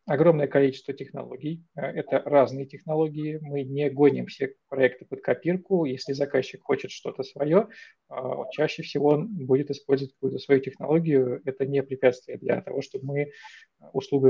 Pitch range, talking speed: 135-170 Hz, 145 wpm